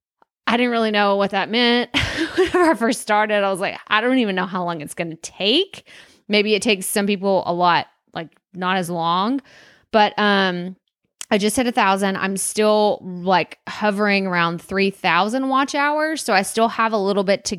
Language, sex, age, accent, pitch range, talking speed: English, female, 20-39, American, 180-220 Hz, 195 wpm